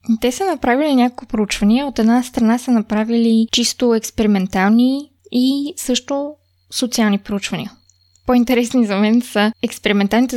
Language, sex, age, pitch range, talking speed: Bulgarian, female, 20-39, 210-260 Hz, 120 wpm